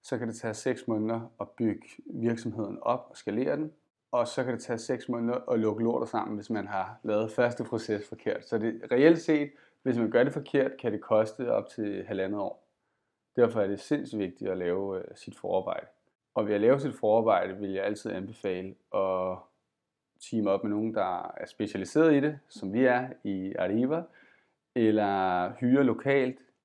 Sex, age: male, 30-49